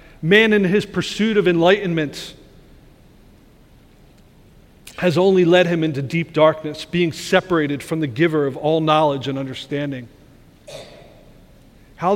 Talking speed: 120 wpm